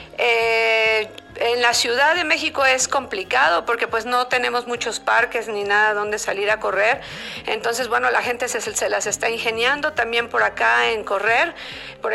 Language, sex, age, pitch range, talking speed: Spanish, female, 50-69, 215-255 Hz, 175 wpm